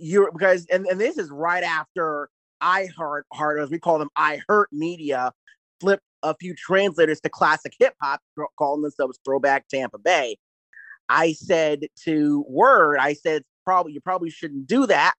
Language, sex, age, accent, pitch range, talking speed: English, male, 30-49, American, 140-180 Hz, 170 wpm